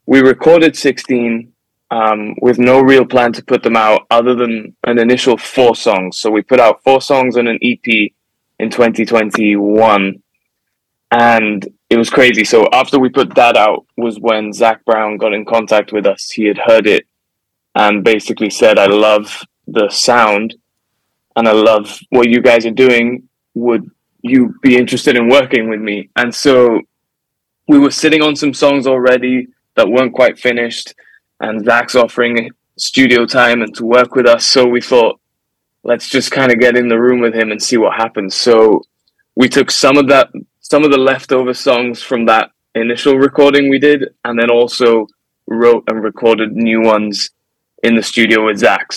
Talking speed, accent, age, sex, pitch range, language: 180 wpm, British, 20-39, male, 110-130 Hz, English